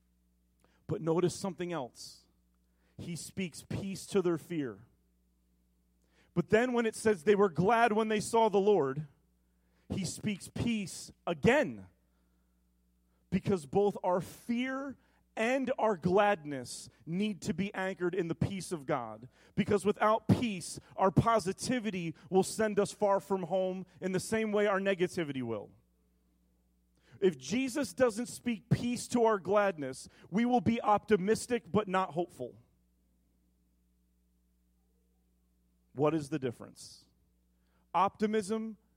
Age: 40-59